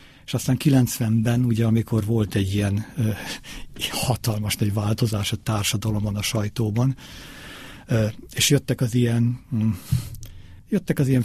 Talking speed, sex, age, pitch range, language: 130 wpm, male, 50-69, 110-125 Hz, Hungarian